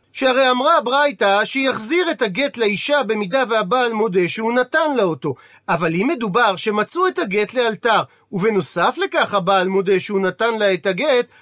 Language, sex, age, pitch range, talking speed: Hebrew, male, 40-59, 200-265 Hz, 160 wpm